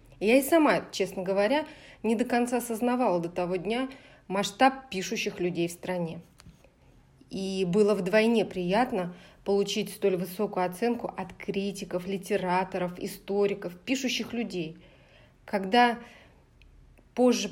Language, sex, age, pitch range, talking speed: Russian, female, 30-49, 185-230 Hz, 115 wpm